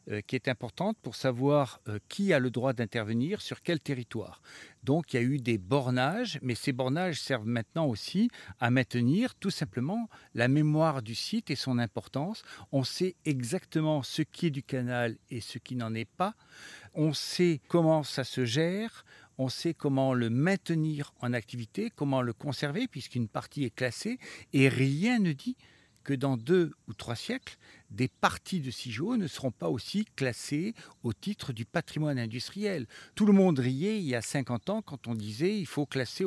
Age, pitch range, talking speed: 50-69, 125-170 Hz, 180 wpm